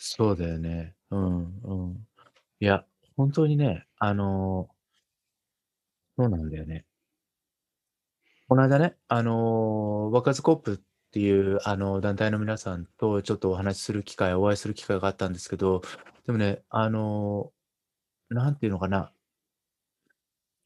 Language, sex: Japanese, male